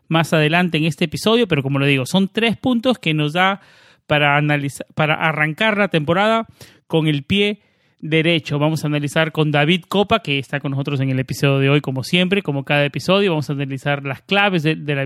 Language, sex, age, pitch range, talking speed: Spanish, male, 30-49, 150-190 Hz, 210 wpm